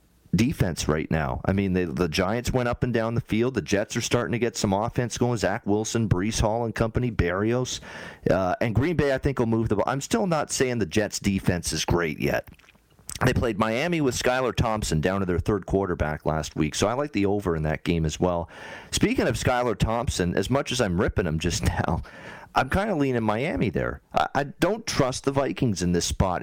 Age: 40-59